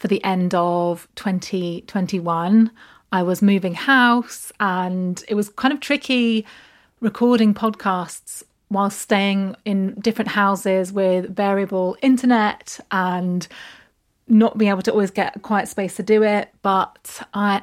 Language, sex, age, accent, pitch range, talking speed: English, female, 30-49, British, 190-225 Hz, 135 wpm